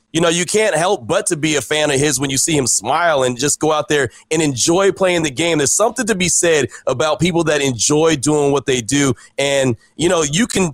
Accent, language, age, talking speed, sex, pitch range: American, English, 30-49, 250 wpm, male, 140-175 Hz